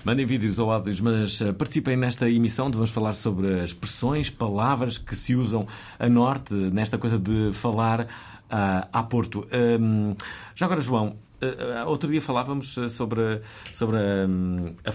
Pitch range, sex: 100-125 Hz, male